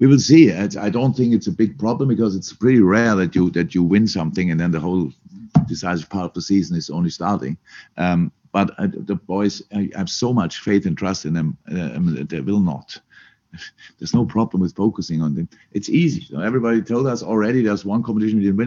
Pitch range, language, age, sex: 85-110 Hz, English, 50-69, male